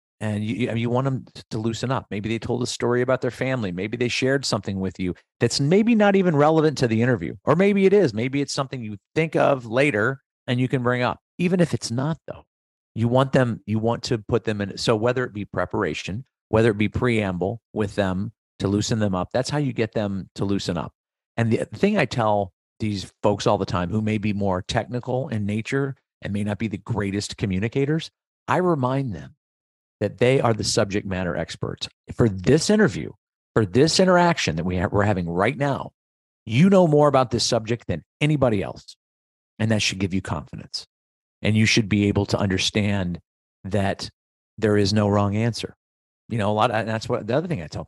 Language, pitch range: English, 100-130 Hz